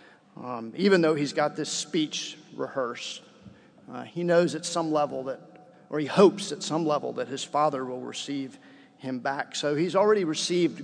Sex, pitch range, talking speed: male, 145-170 Hz, 175 wpm